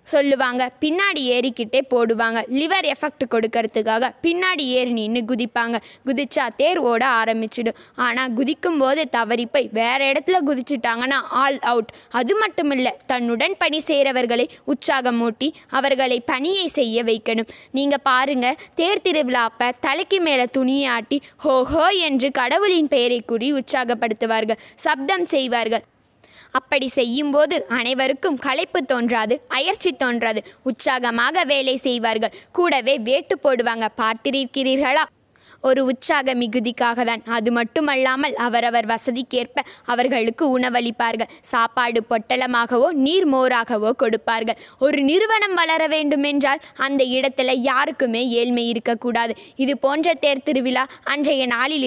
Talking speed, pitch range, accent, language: 105 wpm, 235-285 Hz, native, Tamil